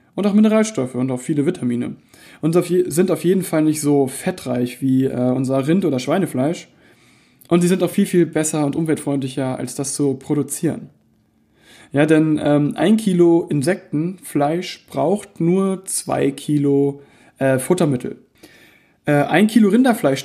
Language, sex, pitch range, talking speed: German, male, 135-170 Hz, 150 wpm